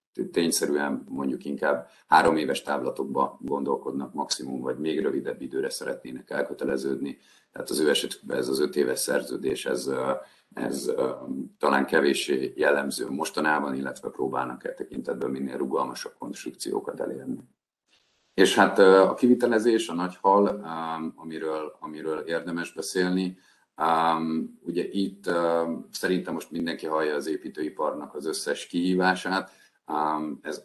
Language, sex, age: Hungarian, male, 50-69